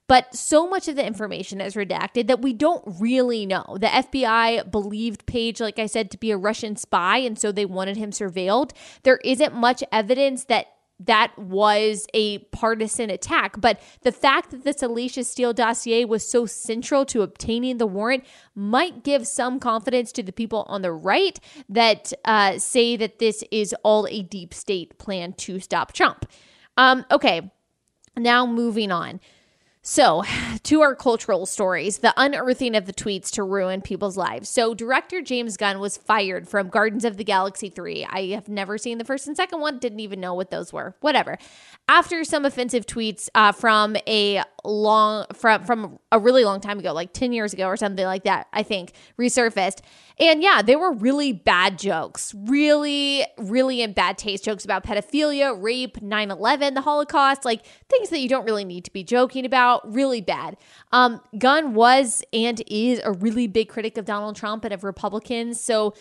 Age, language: 20-39, English